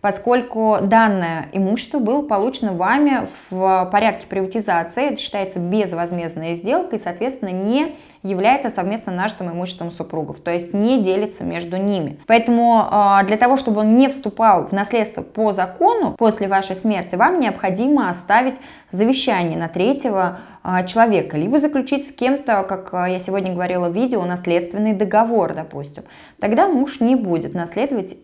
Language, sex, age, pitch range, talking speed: Russian, female, 20-39, 180-245 Hz, 140 wpm